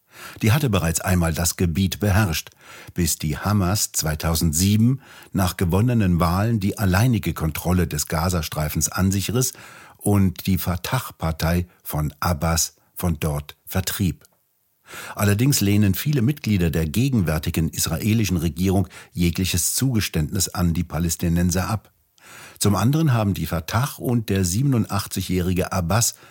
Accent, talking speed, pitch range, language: German, 120 wpm, 85-105 Hz, German